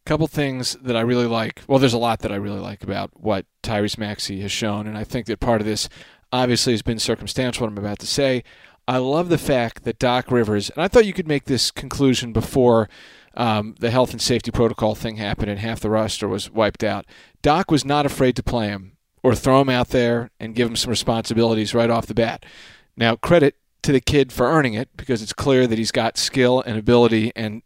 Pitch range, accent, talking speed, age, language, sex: 115-135 Hz, American, 235 wpm, 40-59, English, male